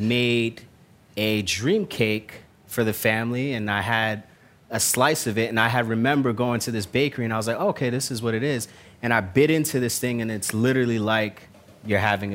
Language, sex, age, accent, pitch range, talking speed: English, male, 30-49, American, 105-125 Hz, 215 wpm